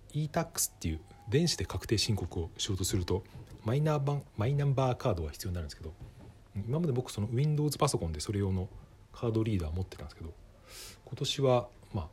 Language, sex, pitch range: Japanese, male, 95-120 Hz